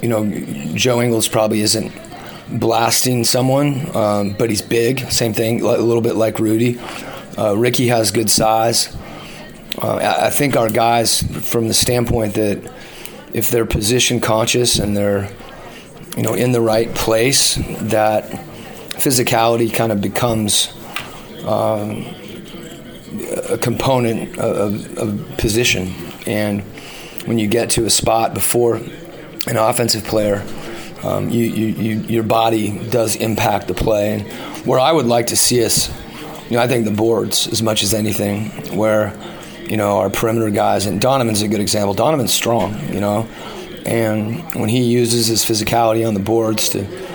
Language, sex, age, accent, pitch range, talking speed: English, male, 30-49, American, 110-120 Hz, 150 wpm